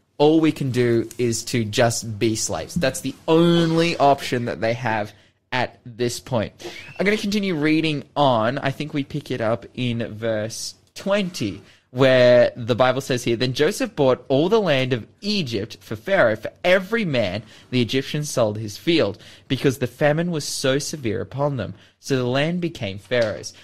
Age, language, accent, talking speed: 20-39, English, Australian, 180 wpm